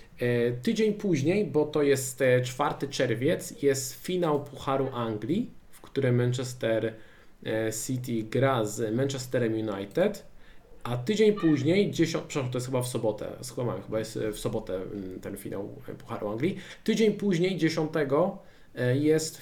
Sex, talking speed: male, 125 wpm